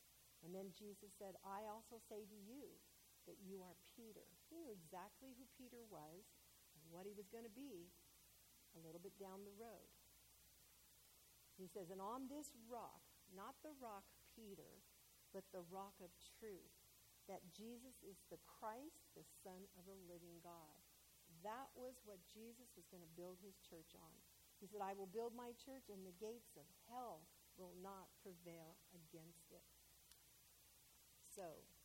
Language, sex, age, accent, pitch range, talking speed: English, female, 50-69, American, 180-225 Hz, 165 wpm